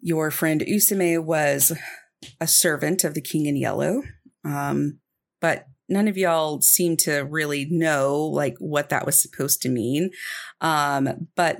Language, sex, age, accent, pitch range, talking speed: English, female, 40-59, American, 150-190 Hz, 150 wpm